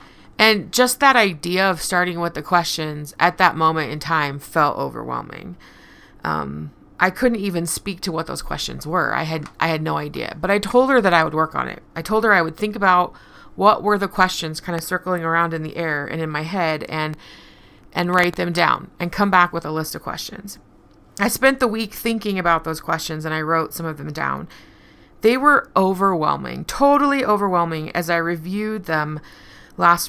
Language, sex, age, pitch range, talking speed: English, female, 30-49, 160-210 Hz, 205 wpm